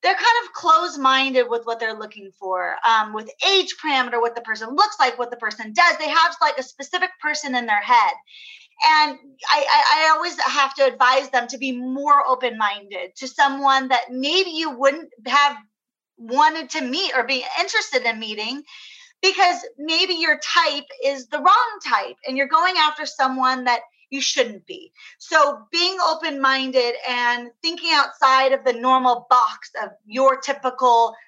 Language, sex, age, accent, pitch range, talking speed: English, female, 30-49, American, 240-310 Hz, 170 wpm